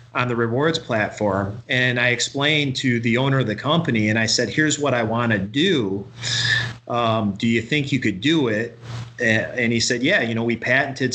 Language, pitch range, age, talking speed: English, 115-135 Hz, 40-59, 205 wpm